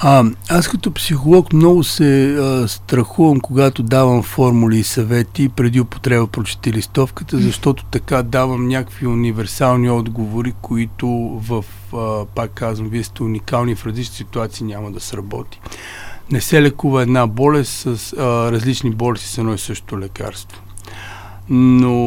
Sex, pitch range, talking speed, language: male, 100-125 Hz, 140 wpm, Bulgarian